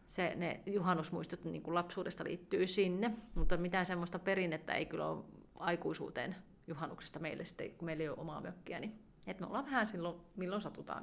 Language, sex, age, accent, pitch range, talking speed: Finnish, female, 30-49, native, 170-205 Hz, 160 wpm